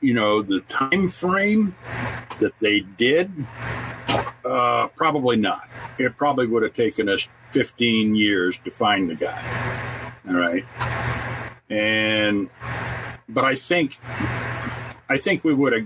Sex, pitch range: male, 105-135 Hz